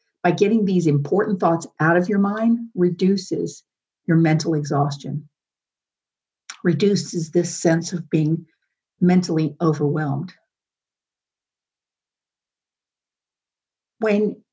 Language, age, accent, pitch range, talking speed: English, 50-69, American, 155-195 Hz, 85 wpm